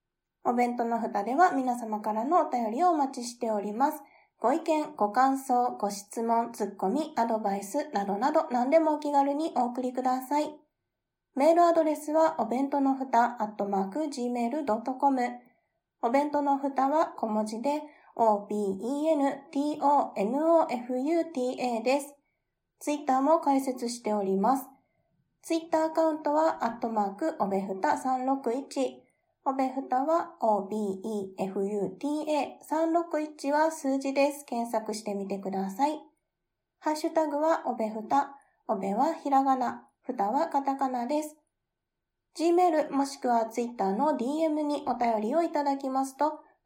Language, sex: Japanese, female